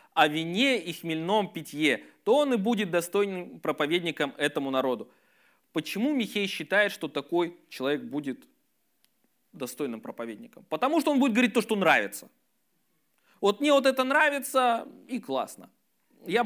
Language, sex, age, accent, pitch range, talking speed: Russian, male, 20-39, native, 170-255 Hz, 140 wpm